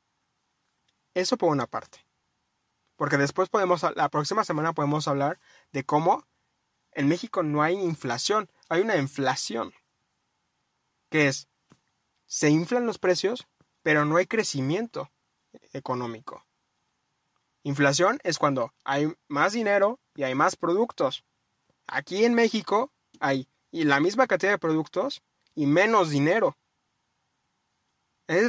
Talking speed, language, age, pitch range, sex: 120 wpm, Spanish, 20-39, 150-205 Hz, male